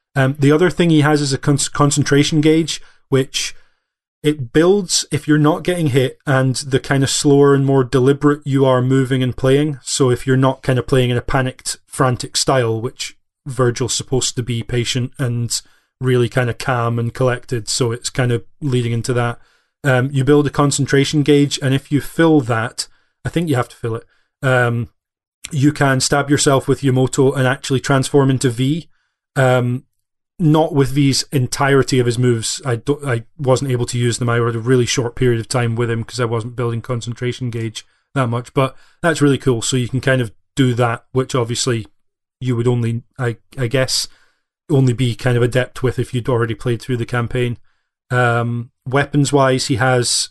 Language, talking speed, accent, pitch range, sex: English, 190 wpm, British, 120-140 Hz, male